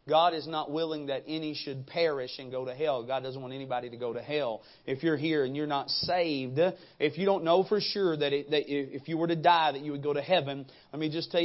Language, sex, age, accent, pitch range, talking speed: English, male, 30-49, American, 140-185 Hz, 260 wpm